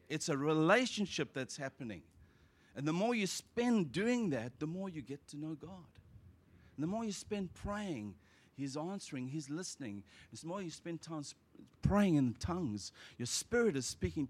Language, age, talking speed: English, 50-69, 170 wpm